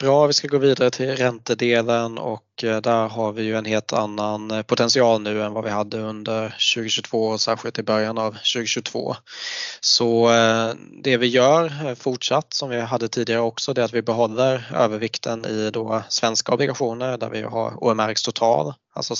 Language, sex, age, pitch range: Swedish, male, 20-39, 110-125 Hz